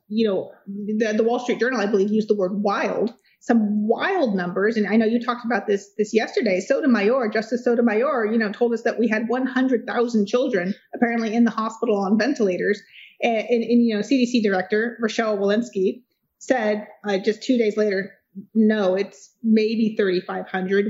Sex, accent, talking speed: female, American, 180 wpm